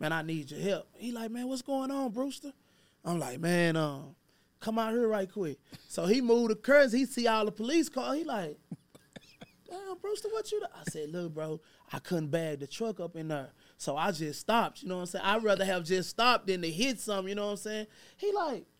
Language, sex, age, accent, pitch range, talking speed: English, male, 20-39, American, 175-230 Hz, 245 wpm